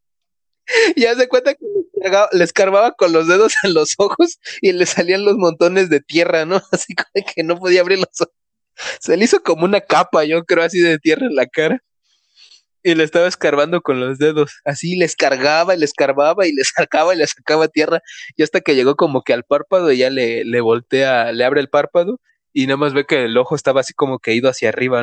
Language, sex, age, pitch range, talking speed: Spanish, male, 20-39, 130-180 Hz, 225 wpm